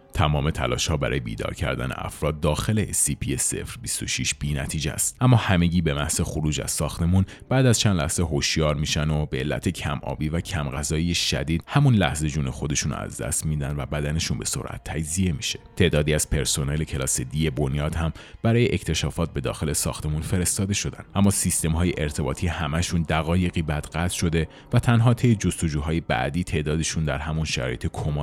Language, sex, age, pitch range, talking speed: Persian, male, 30-49, 75-95 Hz, 170 wpm